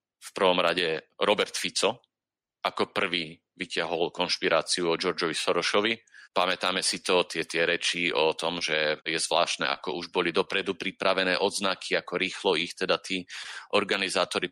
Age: 40-59